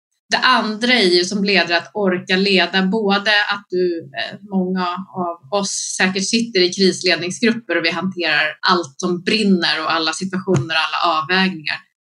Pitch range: 170-205 Hz